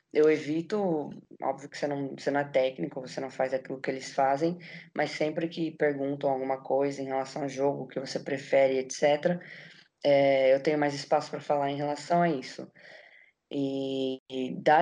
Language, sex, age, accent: Portuguese, female, 20-39, Brazilian